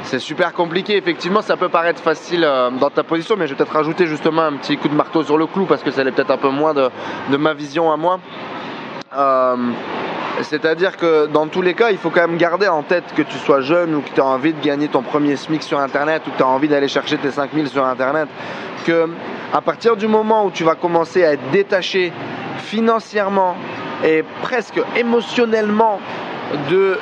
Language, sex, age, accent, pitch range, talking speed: French, male, 20-39, French, 145-185 Hz, 215 wpm